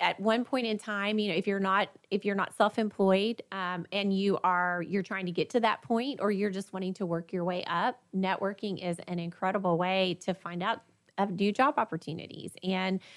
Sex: female